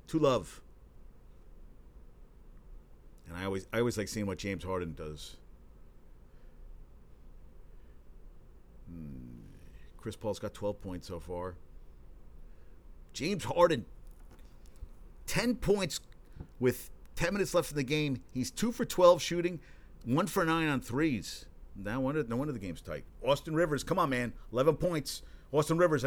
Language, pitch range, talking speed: English, 95-150 Hz, 130 wpm